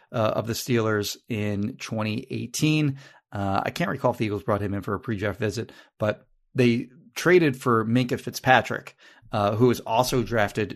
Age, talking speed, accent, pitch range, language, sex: 30-49, 180 wpm, American, 105-130 Hz, English, male